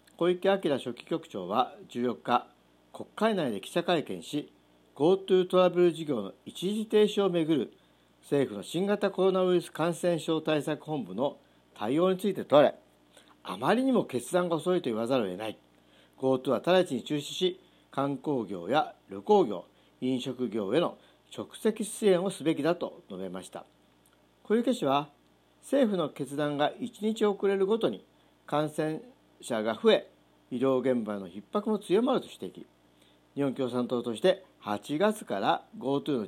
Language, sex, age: Japanese, male, 50-69